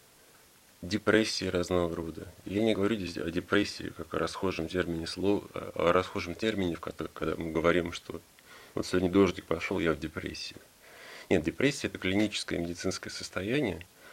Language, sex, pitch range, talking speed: Russian, male, 85-100 Hz, 155 wpm